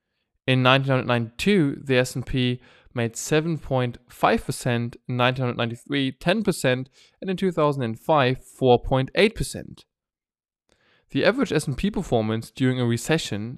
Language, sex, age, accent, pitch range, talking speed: German, male, 20-39, German, 120-155 Hz, 85 wpm